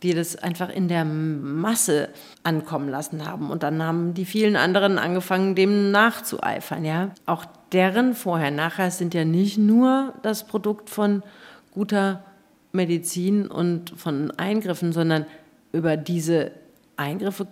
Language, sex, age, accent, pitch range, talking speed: German, female, 50-69, German, 170-215 Hz, 130 wpm